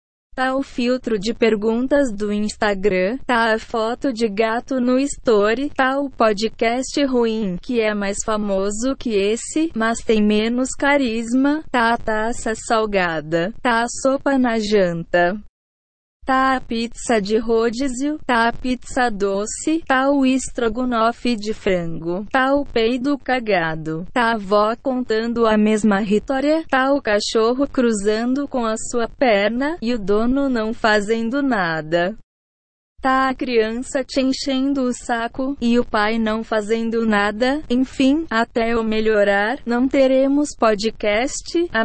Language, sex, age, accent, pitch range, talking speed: Portuguese, female, 20-39, Brazilian, 215-260 Hz, 140 wpm